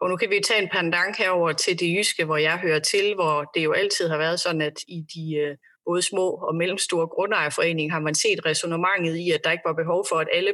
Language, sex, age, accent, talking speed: Danish, female, 30-49, native, 245 wpm